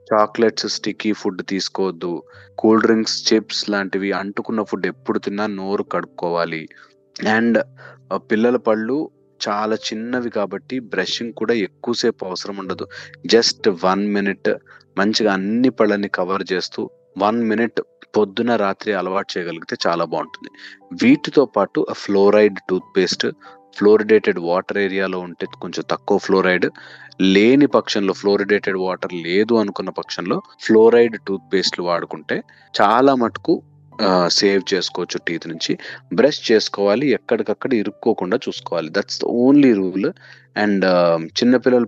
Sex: male